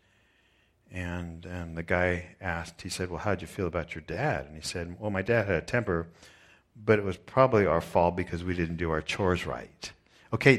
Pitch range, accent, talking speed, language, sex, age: 85-105 Hz, American, 215 wpm, English, male, 50-69